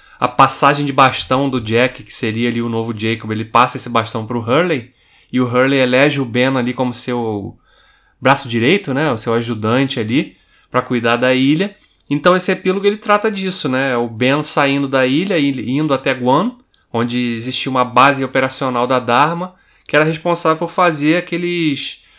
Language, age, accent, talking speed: Portuguese, 20-39, Brazilian, 180 wpm